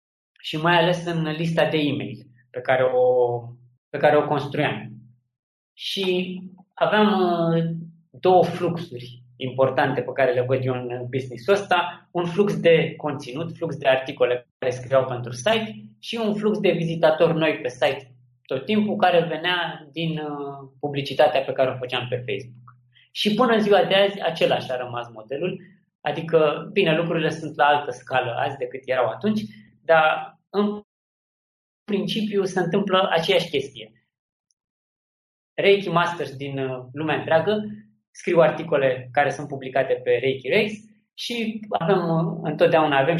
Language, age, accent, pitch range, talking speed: Romanian, 20-39, native, 135-185 Hz, 145 wpm